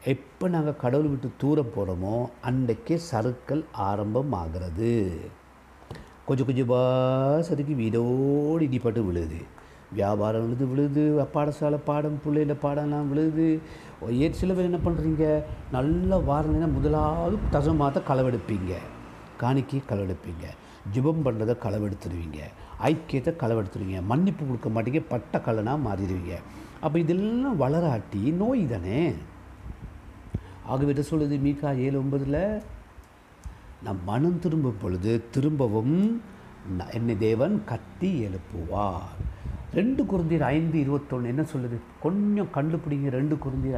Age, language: 60-79, Tamil